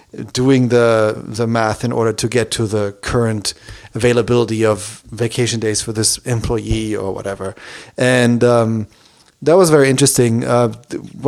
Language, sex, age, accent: English, male, 30-49, German